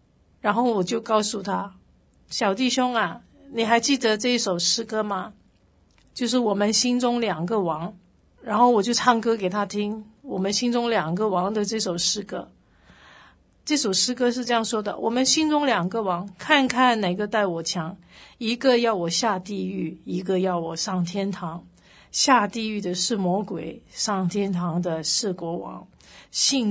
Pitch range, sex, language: 185-245 Hz, female, Chinese